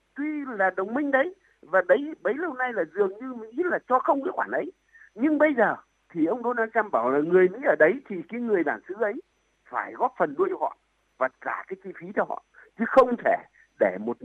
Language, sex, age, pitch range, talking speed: Vietnamese, male, 60-79, 200-305 Hz, 230 wpm